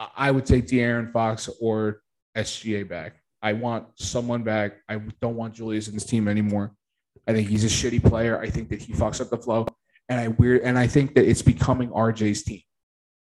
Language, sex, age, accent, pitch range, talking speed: English, male, 20-39, American, 105-120 Hz, 205 wpm